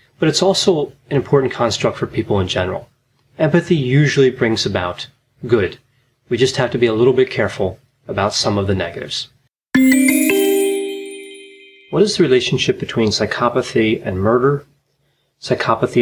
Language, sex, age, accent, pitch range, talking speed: English, male, 30-49, American, 110-145 Hz, 140 wpm